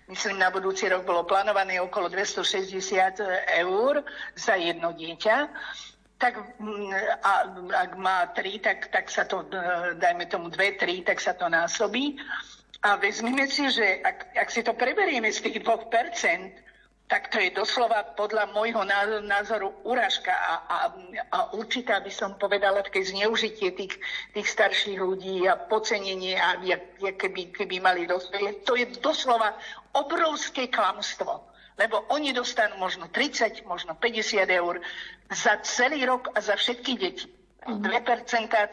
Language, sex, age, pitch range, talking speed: Slovak, female, 50-69, 185-235 Hz, 145 wpm